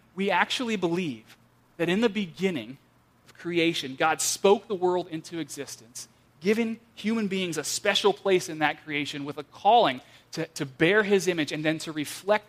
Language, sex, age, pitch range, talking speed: English, male, 30-49, 145-190 Hz, 175 wpm